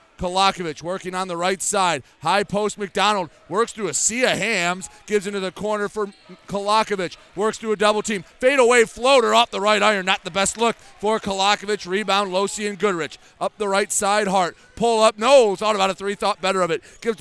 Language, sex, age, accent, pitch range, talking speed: English, male, 30-49, American, 185-220 Hz, 210 wpm